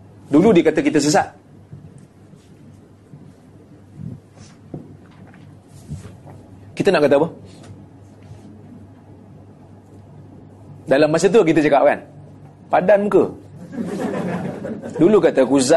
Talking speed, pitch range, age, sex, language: 75 wpm, 110-145 Hz, 30-49, male, Malay